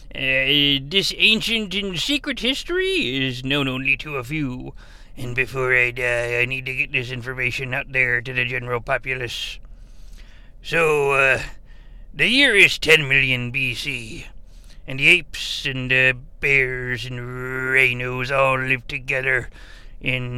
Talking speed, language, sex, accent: 140 wpm, English, male, American